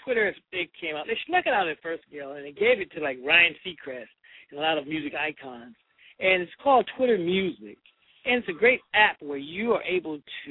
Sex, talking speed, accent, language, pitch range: male, 230 wpm, American, English, 150-215 Hz